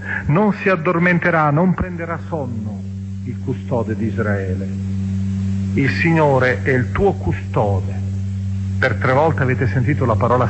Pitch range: 95-130 Hz